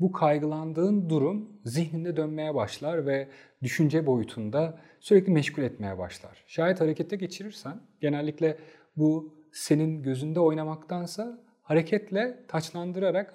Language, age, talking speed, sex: Turkish, 40-59, 105 wpm, male